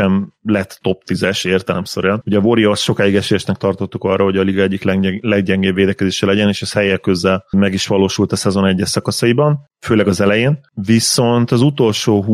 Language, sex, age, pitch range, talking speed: Hungarian, male, 30-49, 95-110 Hz, 165 wpm